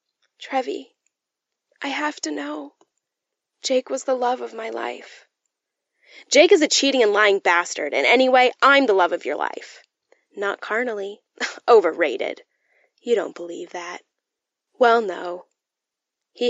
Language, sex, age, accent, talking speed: English, female, 10-29, American, 135 wpm